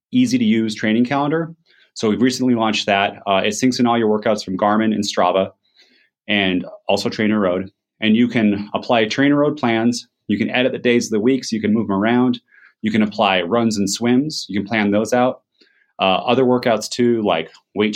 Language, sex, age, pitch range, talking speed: English, male, 30-49, 100-120 Hz, 205 wpm